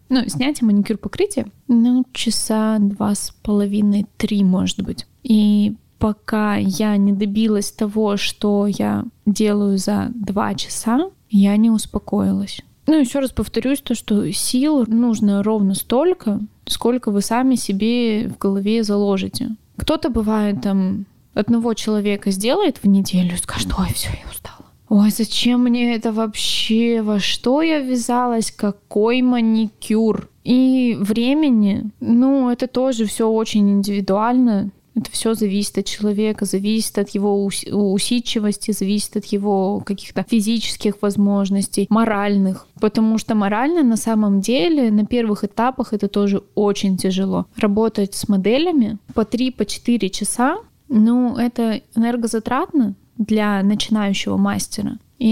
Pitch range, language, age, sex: 205-240 Hz, Russian, 20-39, female